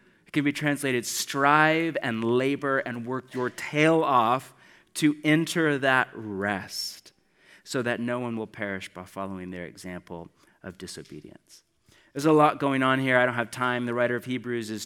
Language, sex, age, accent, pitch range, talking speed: English, male, 30-49, American, 115-140 Hz, 170 wpm